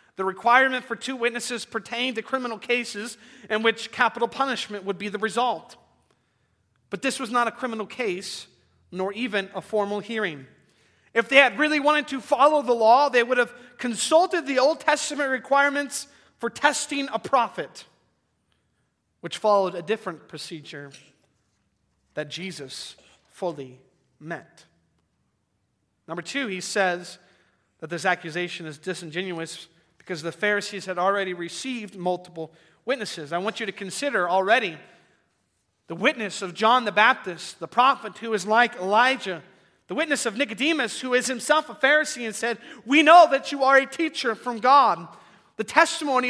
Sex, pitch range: male, 175-255 Hz